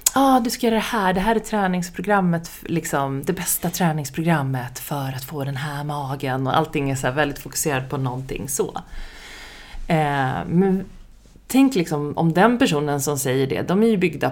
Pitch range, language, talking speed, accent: 135-185 Hz, Swedish, 190 wpm, native